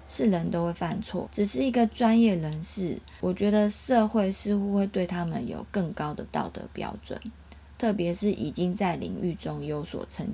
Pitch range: 165-215 Hz